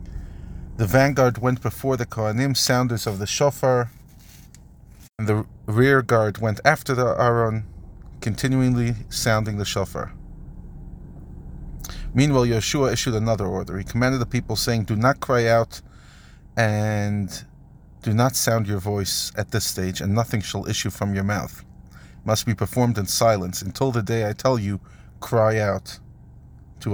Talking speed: 150 wpm